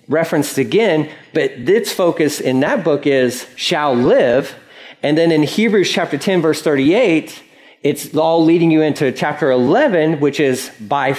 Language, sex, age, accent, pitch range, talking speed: English, male, 40-59, American, 130-170 Hz, 155 wpm